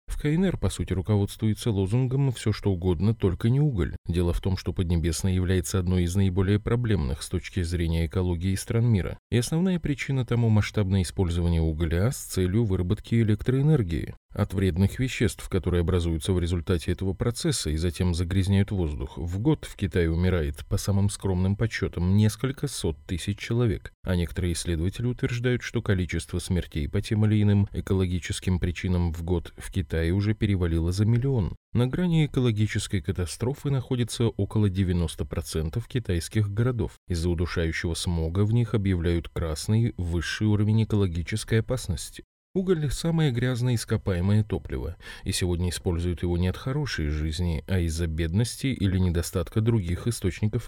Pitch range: 90-115 Hz